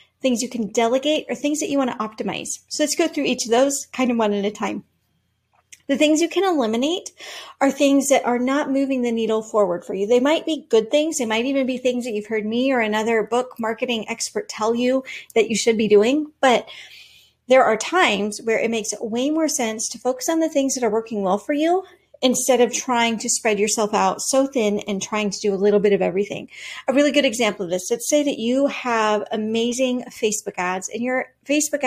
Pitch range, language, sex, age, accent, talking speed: 215-270 Hz, English, female, 40-59, American, 230 wpm